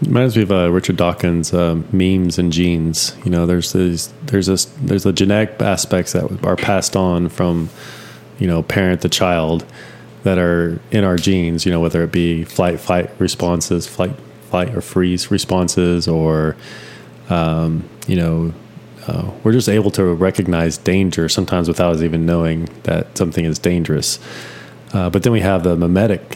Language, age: English, 30-49